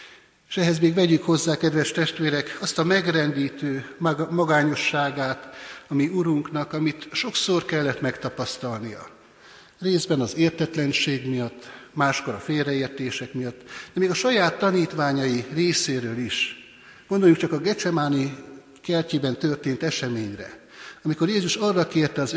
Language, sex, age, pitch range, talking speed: Hungarian, male, 60-79, 130-165 Hz, 120 wpm